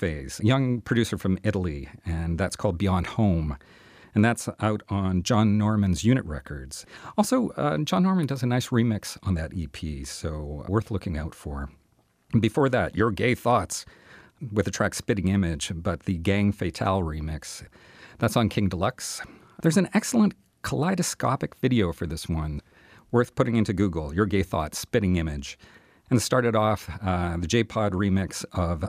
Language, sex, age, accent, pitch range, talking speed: English, male, 40-59, American, 90-115 Hz, 165 wpm